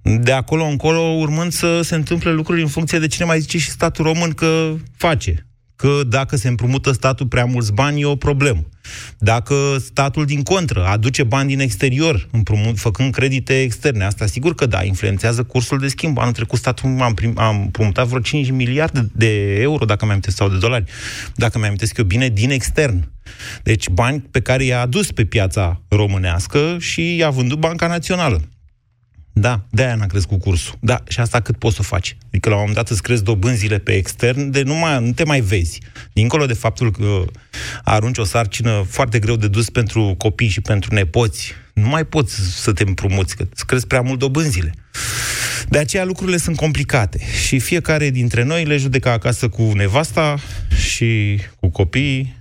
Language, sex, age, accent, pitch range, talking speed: Romanian, male, 30-49, native, 105-140 Hz, 185 wpm